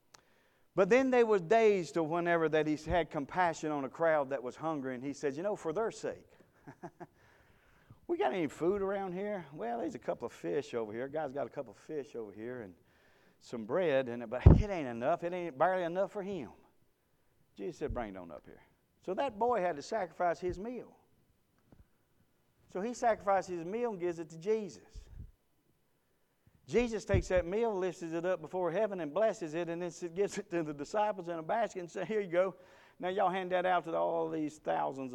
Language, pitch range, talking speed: English, 145-195 Hz, 210 wpm